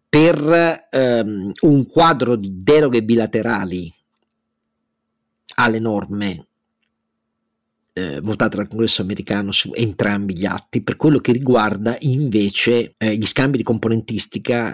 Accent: native